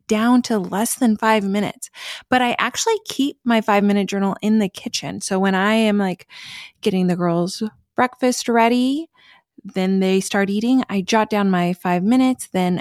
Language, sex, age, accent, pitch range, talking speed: English, female, 20-39, American, 200-255 Hz, 180 wpm